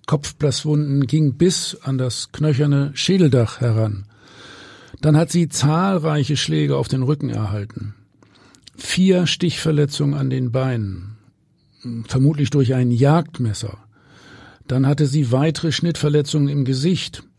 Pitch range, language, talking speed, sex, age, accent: 120-150 Hz, German, 115 wpm, male, 50-69, German